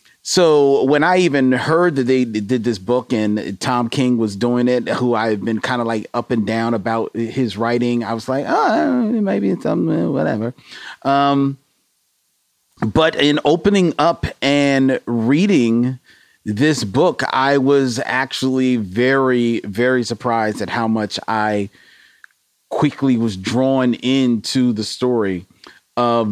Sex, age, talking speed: male, 40-59, 145 wpm